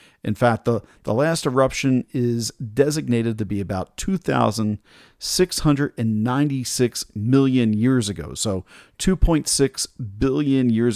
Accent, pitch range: American, 115-150 Hz